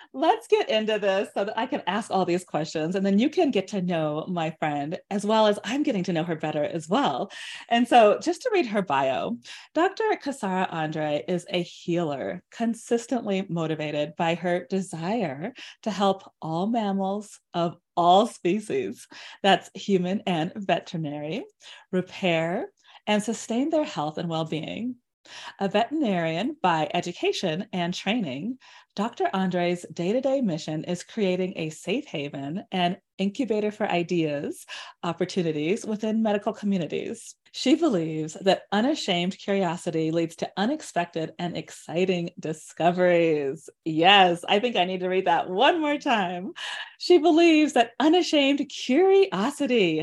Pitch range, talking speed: 175-240 Hz, 140 wpm